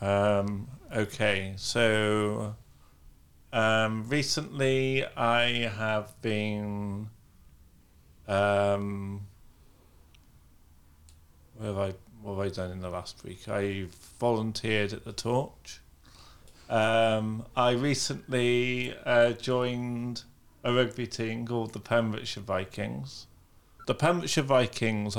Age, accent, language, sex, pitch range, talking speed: 40-59, British, English, male, 100-120 Hz, 95 wpm